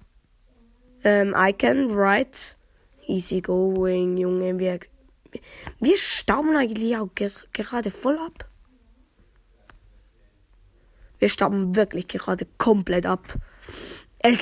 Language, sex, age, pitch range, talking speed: German, female, 20-39, 185-250 Hz, 95 wpm